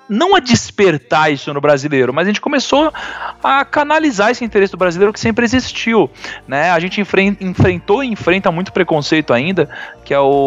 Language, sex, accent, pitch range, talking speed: Portuguese, male, Brazilian, 150-210 Hz, 165 wpm